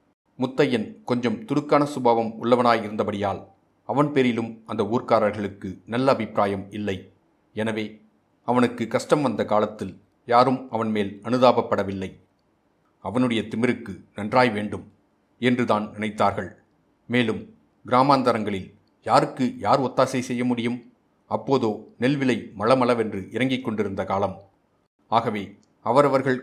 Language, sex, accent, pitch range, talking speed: Tamil, male, native, 100-125 Hz, 95 wpm